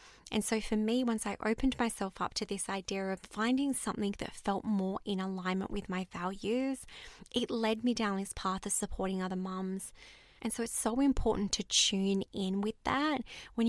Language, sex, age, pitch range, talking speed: English, female, 20-39, 190-235 Hz, 195 wpm